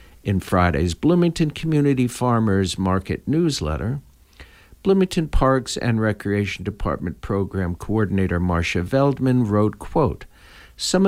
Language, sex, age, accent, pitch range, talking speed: English, male, 60-79, American, 95-140 Hz, 105 wpm